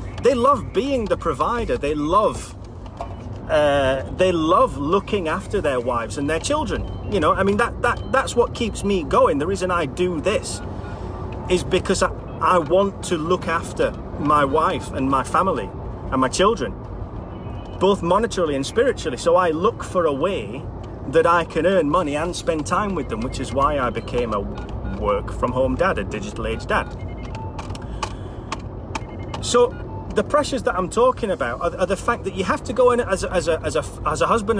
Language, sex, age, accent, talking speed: English, male, 30-49, British, 180 wpm